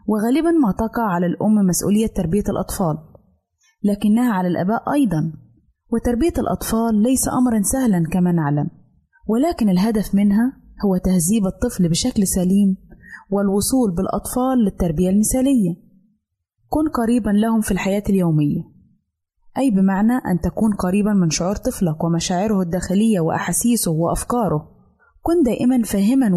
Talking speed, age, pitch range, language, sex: 120 wpm, 20-39, 175-225 Hz, Arabic, female